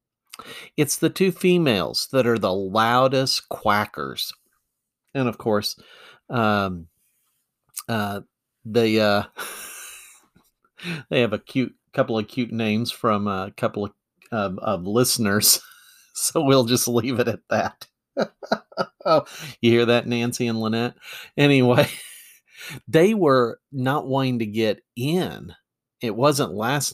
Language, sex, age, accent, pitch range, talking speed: English, male, 50-69, American, 110-140 Hz, 125 wpm